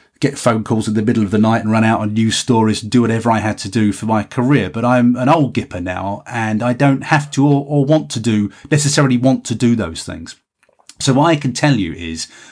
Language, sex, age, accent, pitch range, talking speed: English, male, 30-49, British, 100-130 Hz, 255 wpm